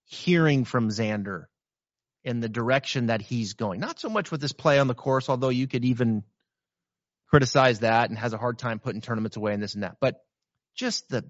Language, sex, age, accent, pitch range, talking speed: English, male, 30-49, American, 115-160 Hz, 205 wpm